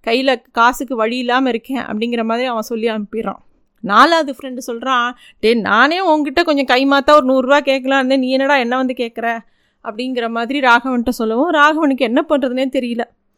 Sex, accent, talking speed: female, native, 160 wpm